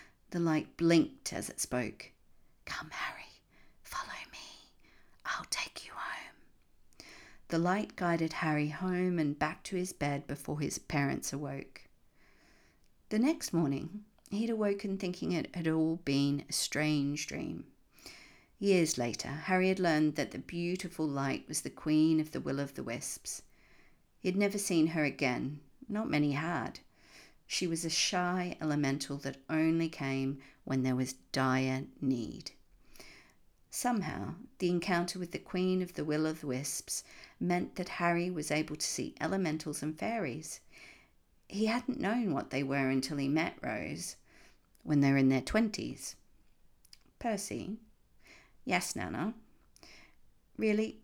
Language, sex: English, female